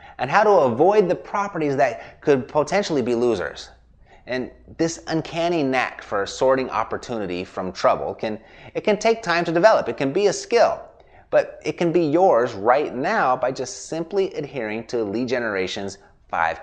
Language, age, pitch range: English, 30-49, 110-170 Hz